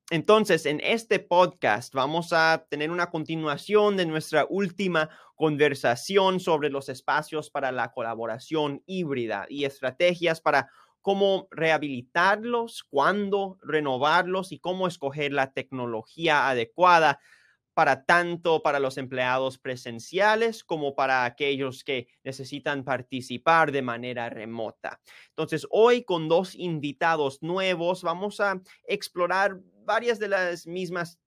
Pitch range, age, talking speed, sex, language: 135-175 Hz, 30-49, 115 wpm, male, English